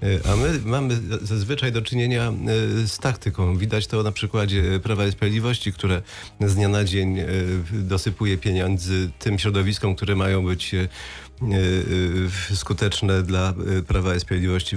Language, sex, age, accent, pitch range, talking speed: Polish, male, 30-49, native, 100-120 Hz, 130 wpm